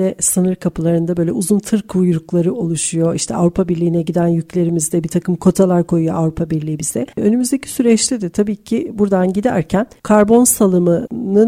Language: Turkish